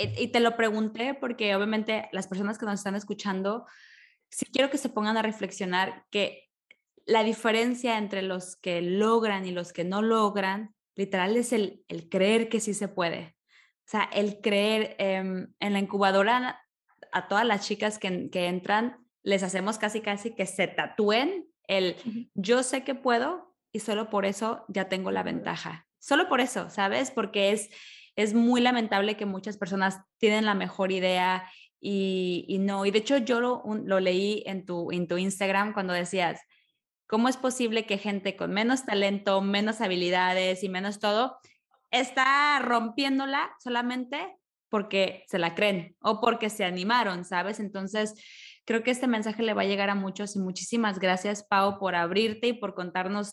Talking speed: 175 wpm